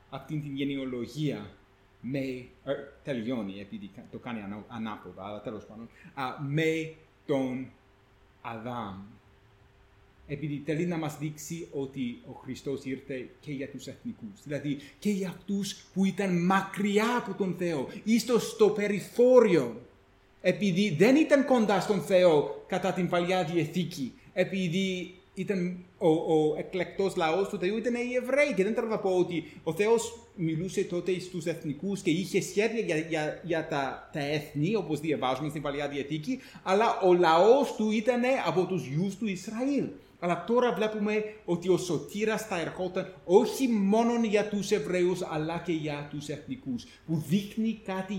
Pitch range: 130-195 Hz